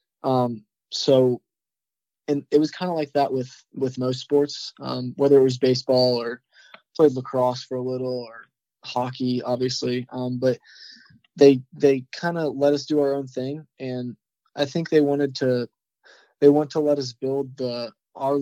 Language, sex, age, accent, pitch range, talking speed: English, male, 20-39, American, 125-145 Hz, 175 wpm